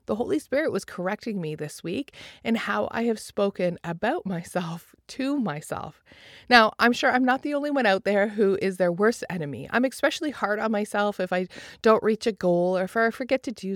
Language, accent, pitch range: English, American, 185-240 Hz